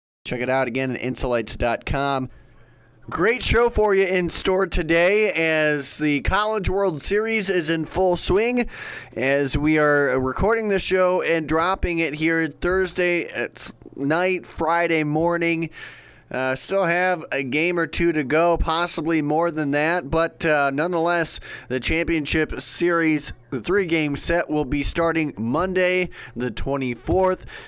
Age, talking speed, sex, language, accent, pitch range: 30-49, 140 wpm, male, English, American, 130-175 Hz